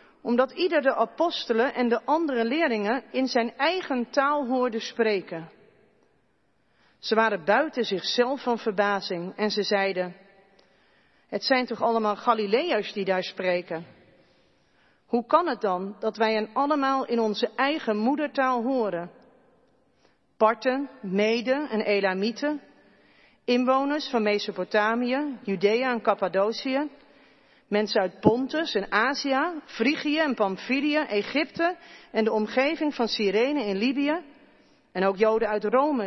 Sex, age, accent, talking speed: female, 40-59, Dutch, 125 wpm